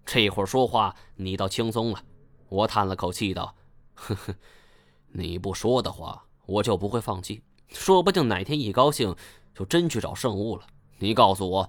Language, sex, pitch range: Chinese, male, 100-135 Hz